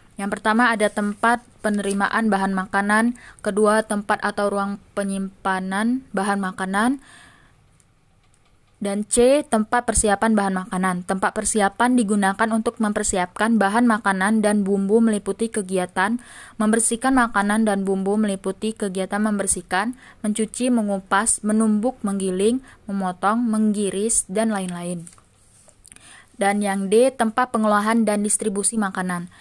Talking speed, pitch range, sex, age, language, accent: 110 wpm, 195-220 Hz, female, 20-39, Indonesian, native